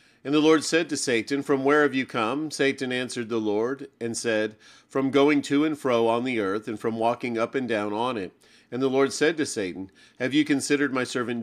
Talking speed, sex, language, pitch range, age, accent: 230 wpm, male, English, 110-140 Hz, 40-59, American